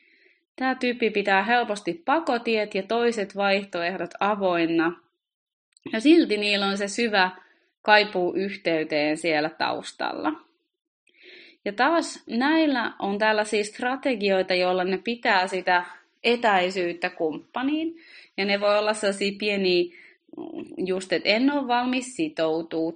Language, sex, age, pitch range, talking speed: Finnish, female, 20-39, 185-245 Hz, 110 wpm